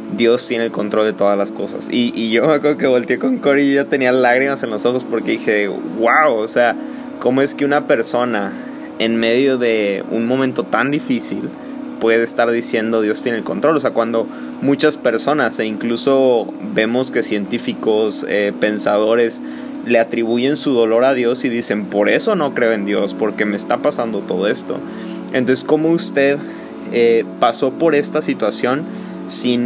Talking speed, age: 180 wpm, 20-39